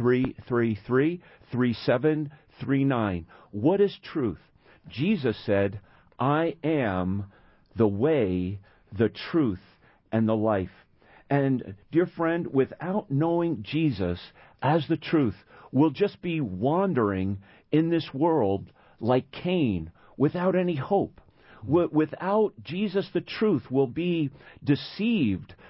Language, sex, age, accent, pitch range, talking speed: English, male, 50-69, American, 115-170 Hz, 115 wpm